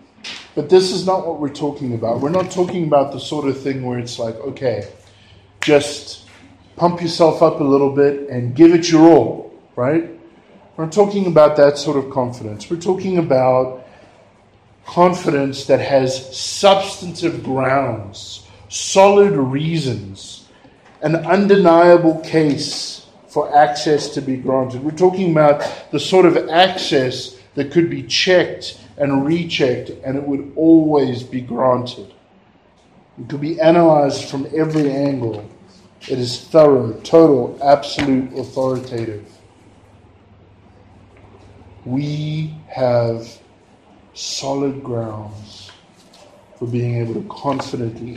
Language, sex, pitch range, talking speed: English, male, 115-155 Hz, 125 wpm